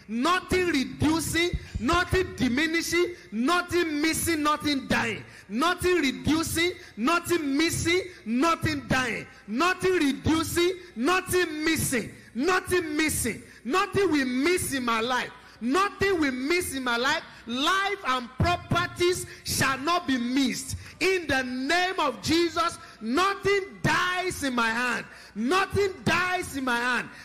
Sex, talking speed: male, 120 wpm